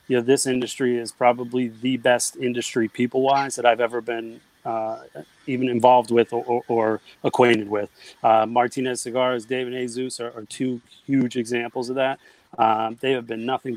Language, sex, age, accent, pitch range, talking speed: English, male, 30-49, American, 120-135 Hz, 175 wpm